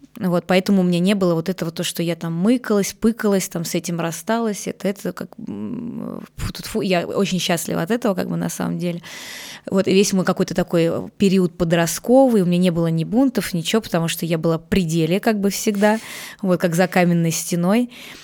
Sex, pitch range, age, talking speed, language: female, 170-205 Hz, 20-39, 200 wpm, Russian